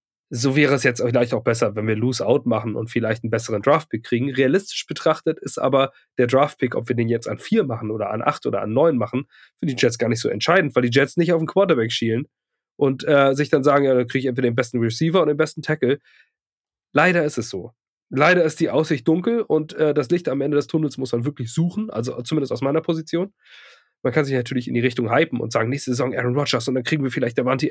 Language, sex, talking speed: German, male, 250 wpm